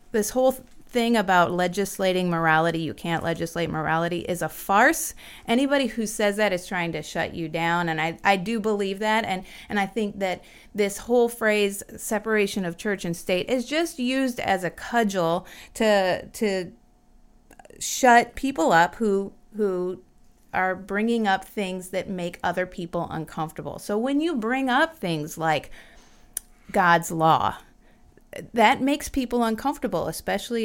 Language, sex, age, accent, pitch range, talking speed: English, female, 30-49, American, 170-230 Hz, 155 wpm